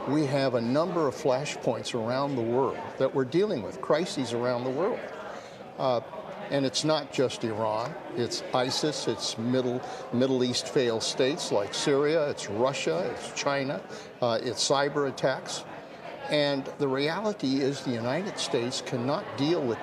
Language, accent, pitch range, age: English, American, 130-160 Hz, 50-69